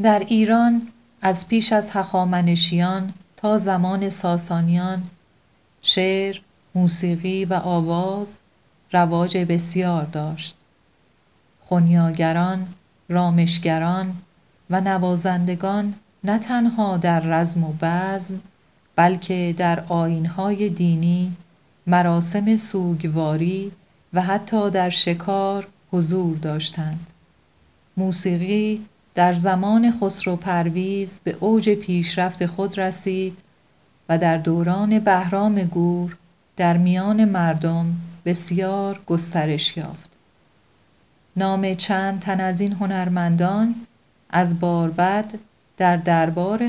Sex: female